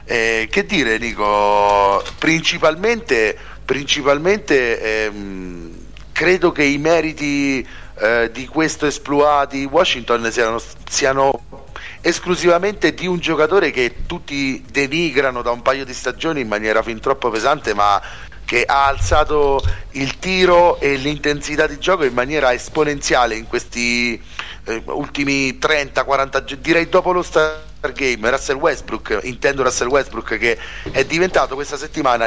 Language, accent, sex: Italian, native, male